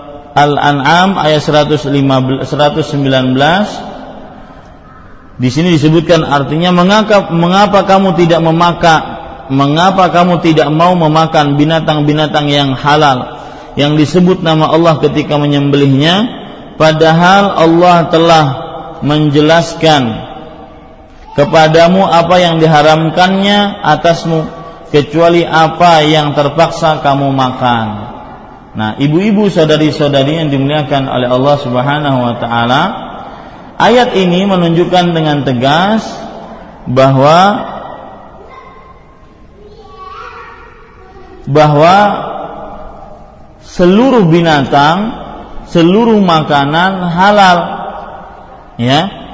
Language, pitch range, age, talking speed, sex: Malay, 145-175 Hz, 40-59, 75 wpm, male